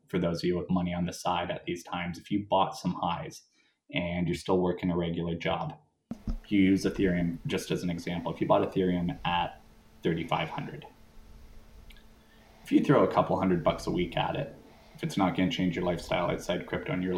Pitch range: 90-95 Hz